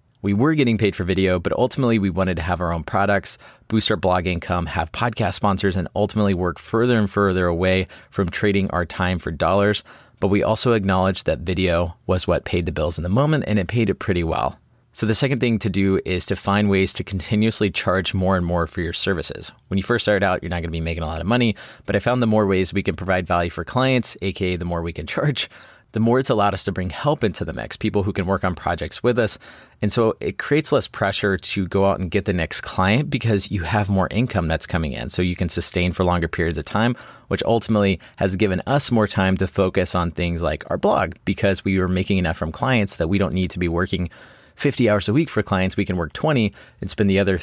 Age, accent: 30-49, American